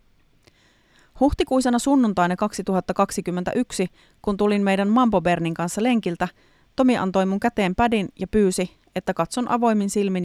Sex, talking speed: female, 125 wpm